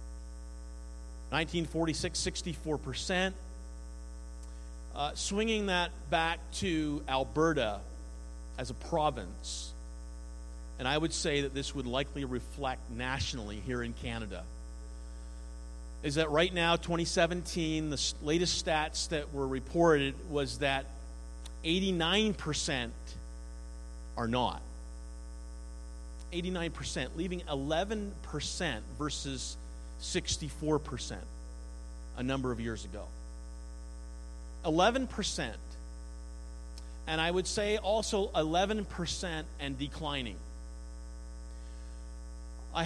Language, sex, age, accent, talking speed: English, male, 50-69, American, 85 wpm